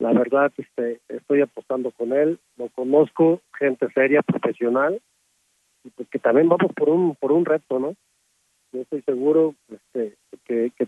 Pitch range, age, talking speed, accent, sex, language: 125-155 Hz, 40-59, 160 wpm, Mexican, male, English